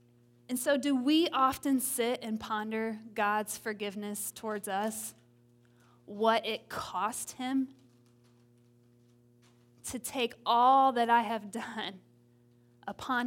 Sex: female